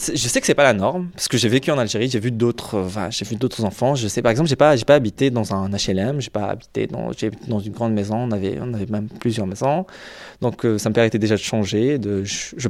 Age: 20-39